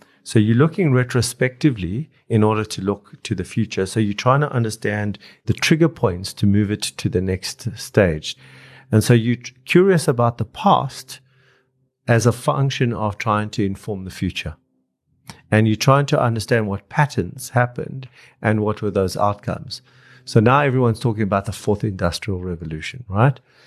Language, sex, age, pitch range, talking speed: English, male, 50-69, 100-125 Hz, 165 wpm